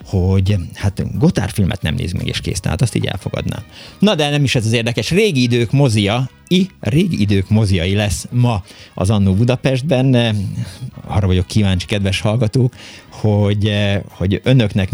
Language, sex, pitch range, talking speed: Hungarian, male, 90-115 Hz, 155 wpm